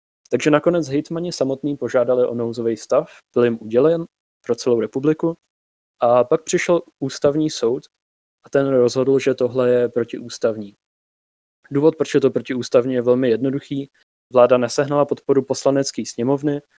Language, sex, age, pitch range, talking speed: Slovak, male, 20-39, 115-130 Hz, 140 wpm